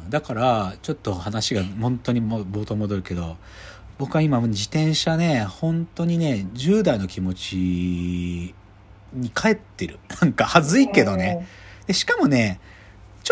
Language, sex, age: Japanese, male, 40-59